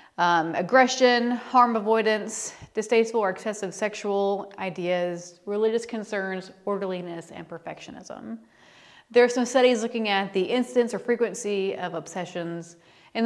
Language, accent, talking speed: English, American, 120 wpm